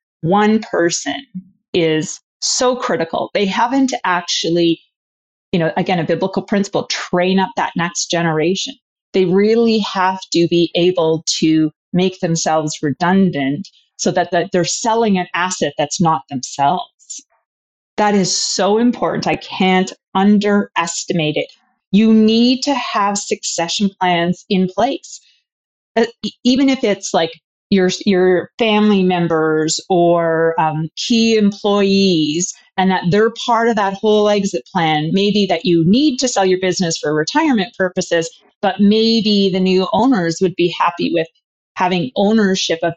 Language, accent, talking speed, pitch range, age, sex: English, American, 140 wpm, 165-210 Hz, 30-49, female